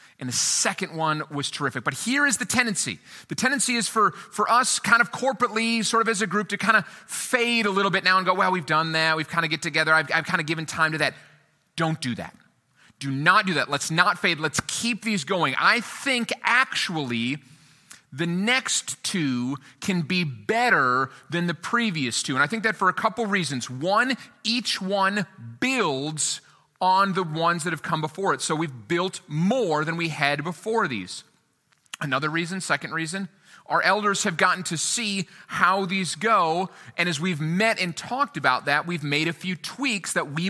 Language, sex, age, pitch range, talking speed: English, male, 30-49, 155-205 Hz, 200 wpm